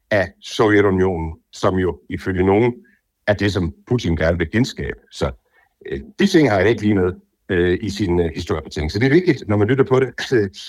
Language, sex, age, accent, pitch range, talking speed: Danish, male, 60-79, native, 100-125 Hz, 210 wpm